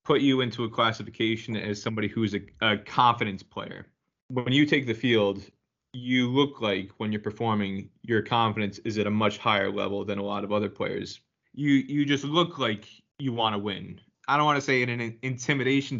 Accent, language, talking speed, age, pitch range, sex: American, English, 205 wpm, 20-39, 105-120 Hz, male